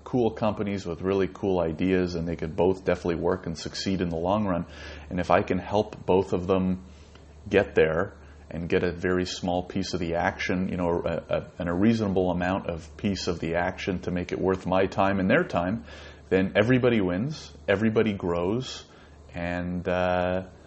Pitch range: 80-100 Hz